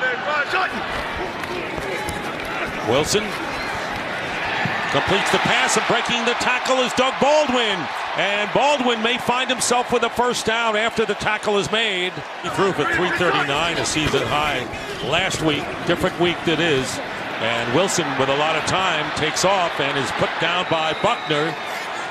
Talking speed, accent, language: 145 wpm, American, English